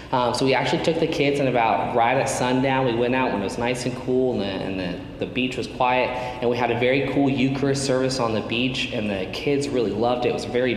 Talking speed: 280 wpm